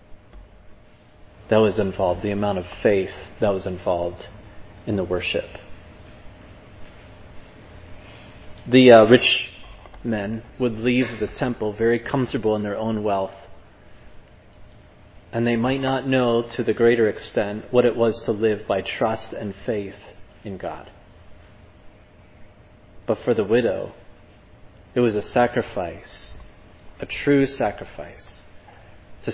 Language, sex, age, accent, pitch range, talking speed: English, male, 30-49, American, 90-115 Hz, 120 wpm